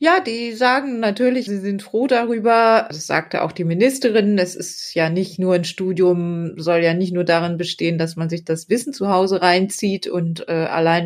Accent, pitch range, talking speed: German, 180-220 Hz, 195 wpm